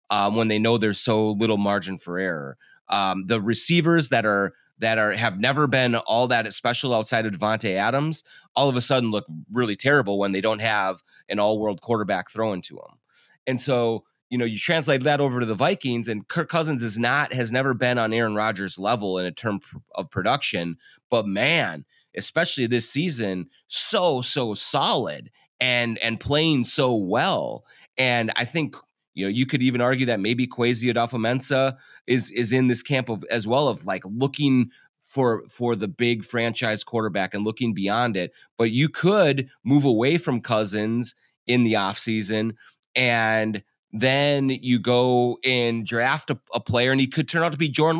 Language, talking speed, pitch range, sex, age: English, 185 wpm, 110-130 Hz, male, 30-49